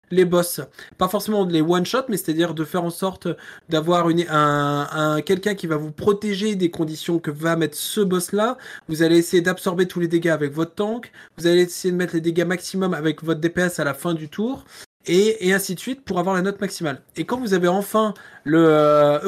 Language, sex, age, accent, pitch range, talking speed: French, male, 20-39, French, 150-185 Hz, 235 wpm